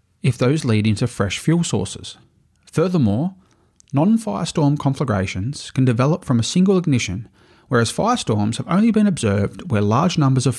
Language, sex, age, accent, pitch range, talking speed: English, male, 30-49, Australian, 110-150 Hz, 145 wpm